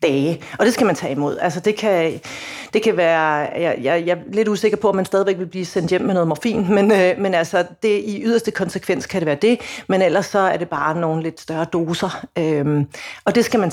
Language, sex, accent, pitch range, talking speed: Danish, female, native, 170-220 Hz, 250 wpm